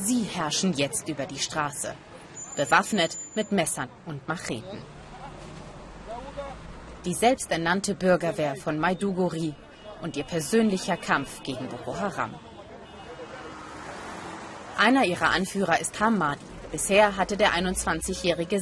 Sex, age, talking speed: female, 30-49, 105 wpm